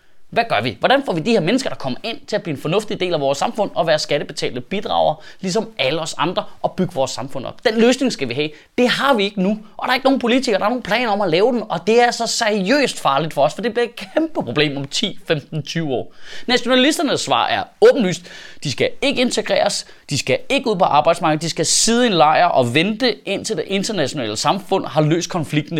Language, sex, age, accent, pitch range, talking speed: Danish, male, 20-39, native, 165-240 Hz, 245 wpm